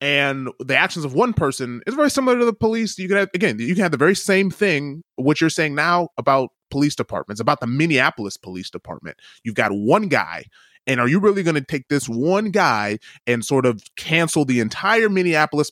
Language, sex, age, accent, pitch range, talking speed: English, male, 30-49, American, 125-185 Hz, 215 wpm